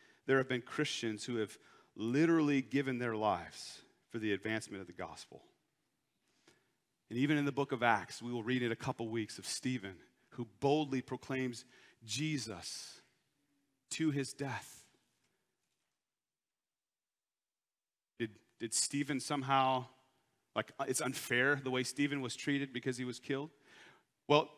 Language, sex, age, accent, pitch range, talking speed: English, male, 40-59, American, 135-215 Hz, 135 wpm